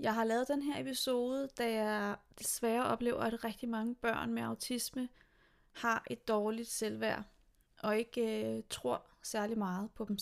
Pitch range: 220-255 Hz